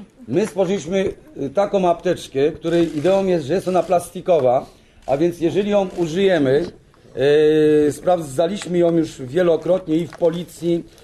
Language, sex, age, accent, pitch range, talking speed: Polish, male, 40-59, native, 160-195 Hz, 125 wpm